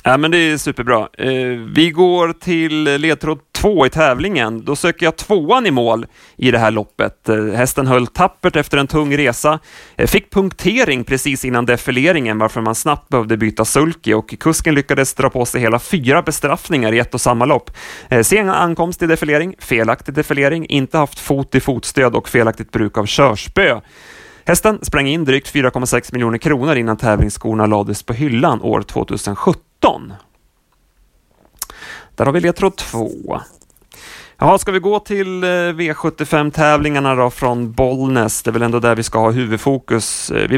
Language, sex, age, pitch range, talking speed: Swedish, male, 30-49, 115-155 Hz, 160 wpm